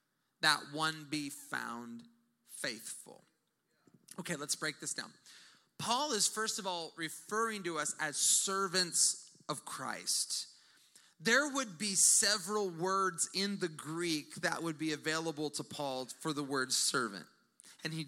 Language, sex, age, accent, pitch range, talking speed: English, male, 30-49, American, 160-210 Hz, 140 wpm